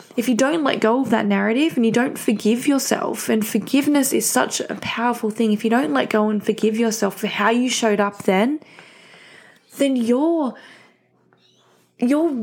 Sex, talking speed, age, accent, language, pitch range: female, 180 wpm, 20-39, Australian, English, 210-265 Hz